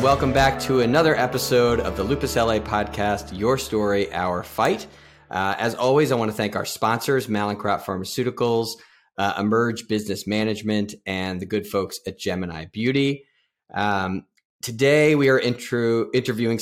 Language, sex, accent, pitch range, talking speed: English, male, American, 100-120 Hz, 150 wpm